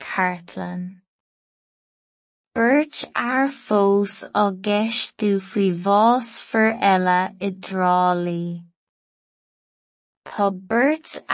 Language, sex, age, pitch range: English, female, 20-39, 190-225 Hz